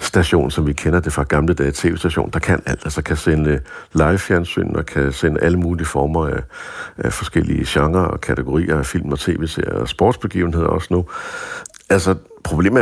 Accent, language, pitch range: native, Danish, 70-85 Hz